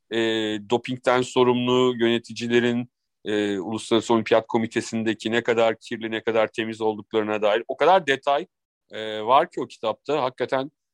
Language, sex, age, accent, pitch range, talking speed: Turkish, male, 40-59, native, 120-150 Hz, 135 wpm